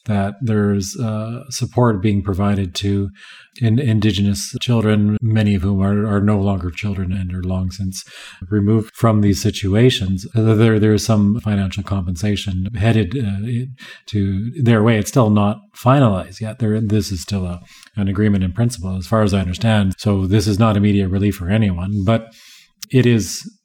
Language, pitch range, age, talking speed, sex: English, 100-115 Hz, 40-59, 175 wpm, male